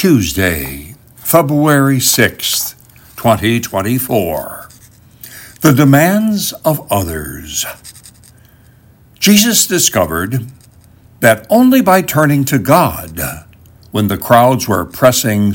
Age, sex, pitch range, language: 60-79, male, 105-140 Hz, English